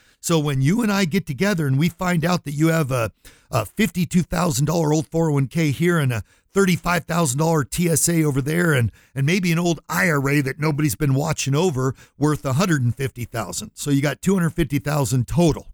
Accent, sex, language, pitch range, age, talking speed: American, male, English, 125-160 Hz, 50-69, 170 wpm